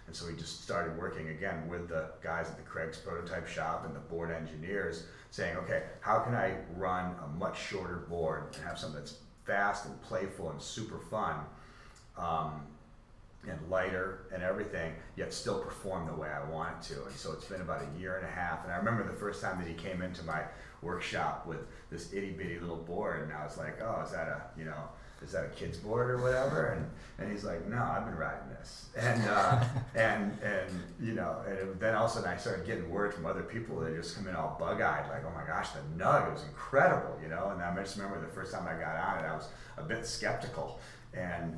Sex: male